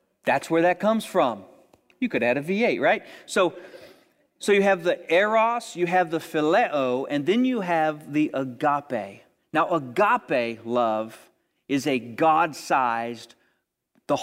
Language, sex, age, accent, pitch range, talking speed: English, male, 40-59, American, 145-195 Hz, 145 wpm